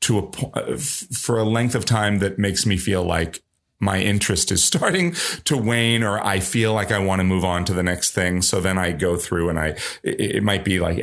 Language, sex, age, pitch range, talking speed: English, male, 30-49, 80-100 Hz, 230 wpm